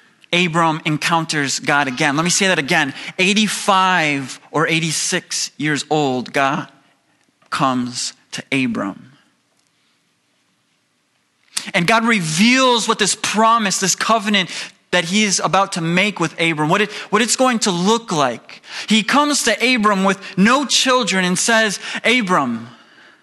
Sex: male